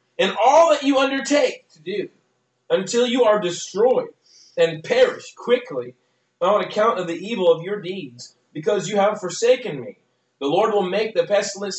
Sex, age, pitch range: male, 40-59, 165-240 Hz